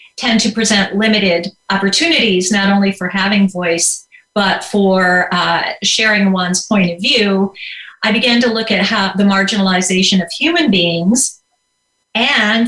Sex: female